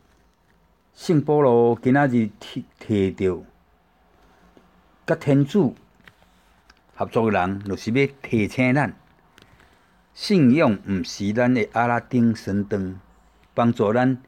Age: 60-79